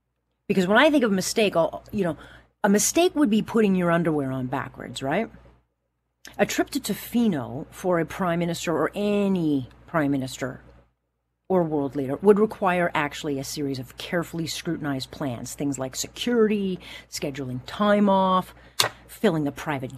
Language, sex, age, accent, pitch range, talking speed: English, female, 40-59, American, 130-200 Hz, 160 wpm